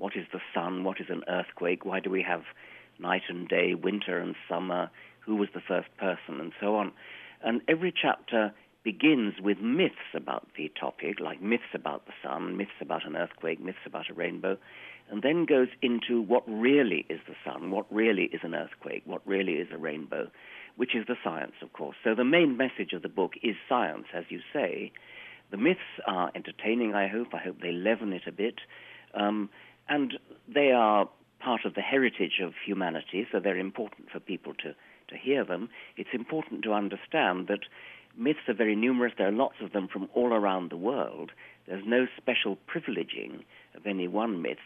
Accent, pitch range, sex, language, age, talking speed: British, 95-125 Hz, male, English, 50-69, 190 wpm